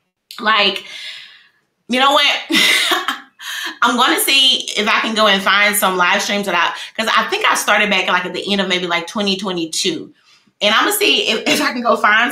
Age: 20-39